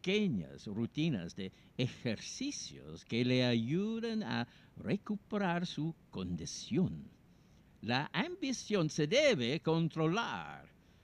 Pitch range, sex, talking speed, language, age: 110-180 Hz, male, 80 wpm, Spanish, 60-79